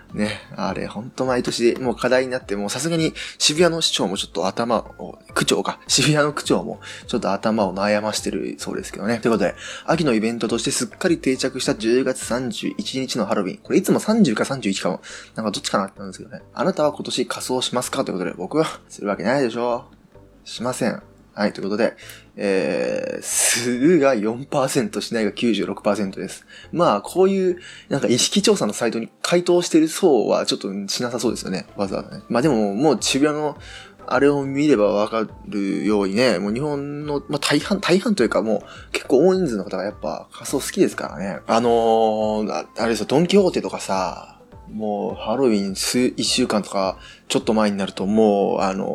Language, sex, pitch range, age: Japanese, male, 105-145 Hz, 20-39